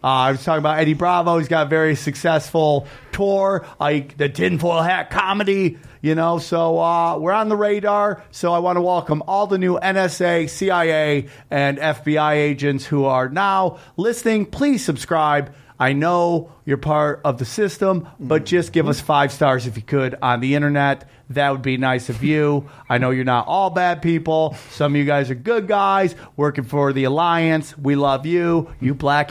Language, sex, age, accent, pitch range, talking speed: English, male, 30-49, American, 135-170 Hz, 190 wpm